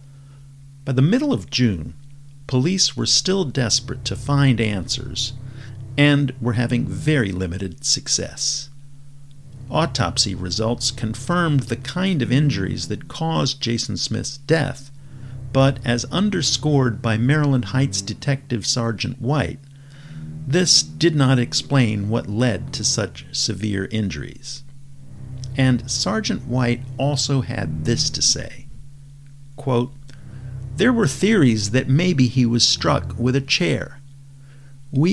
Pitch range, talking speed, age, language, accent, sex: 120-145 Hz, 120 wpm, 50-69, English, American, male